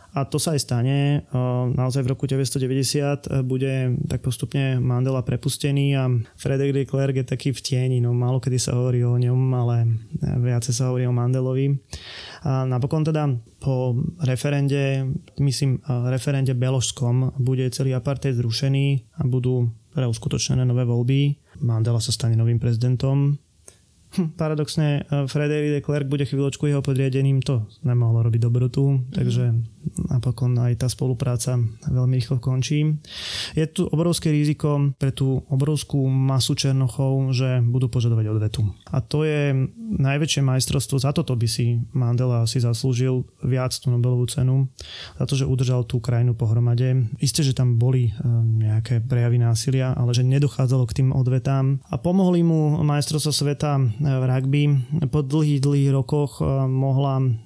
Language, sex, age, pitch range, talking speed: Slovak, male, 20-39, 125-140 Hz, 145 wpm